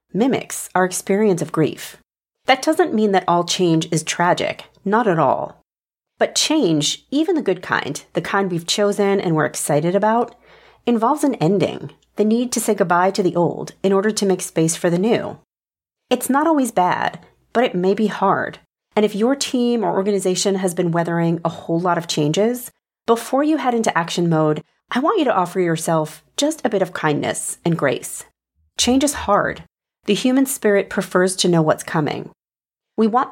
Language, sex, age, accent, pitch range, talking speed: English, female, 40-59, American, 170-235 Hz, 185 wpm